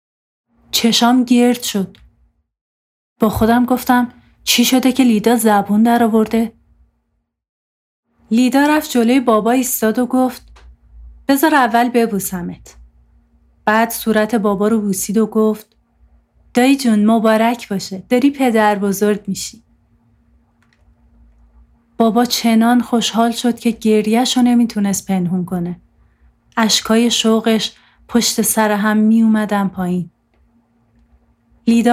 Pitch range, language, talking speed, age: 180-235 Hz, Persian, 100 wpm, 30-49